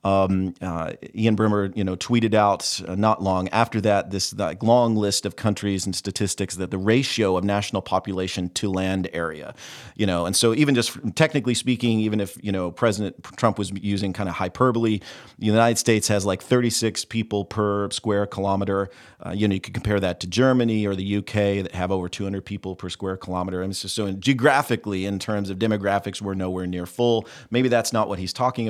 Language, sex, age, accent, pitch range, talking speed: English, male, 40-59, American, 95-115 Hz, 200 wpm